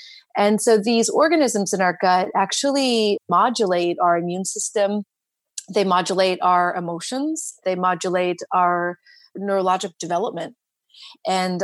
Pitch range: 175-210 Hz